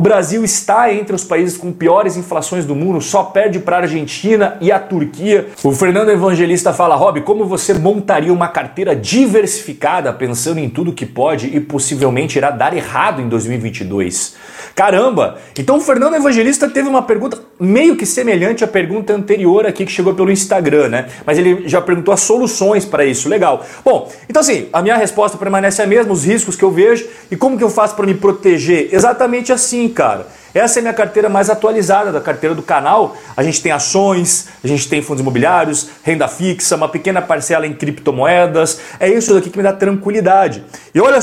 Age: 30-49